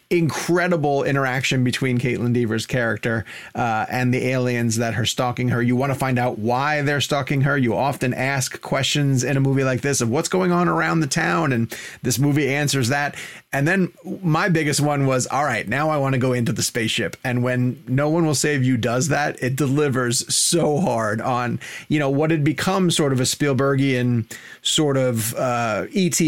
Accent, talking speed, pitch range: American, 200 wpm, 120-145 Hz